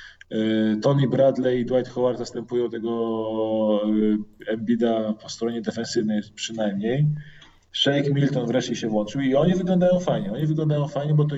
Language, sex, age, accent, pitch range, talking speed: Polish, male, 20-39, native, 110-140 Hz, 135 wpm